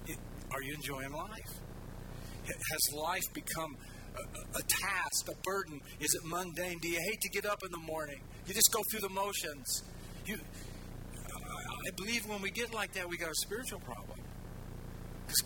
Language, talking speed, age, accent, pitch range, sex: English, 190 wpm, 50-69, American, 165-225 Hz, male